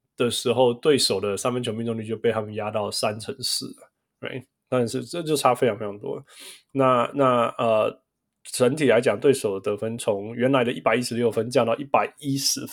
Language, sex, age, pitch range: Chinese, male, 20-39, 110-130 Hz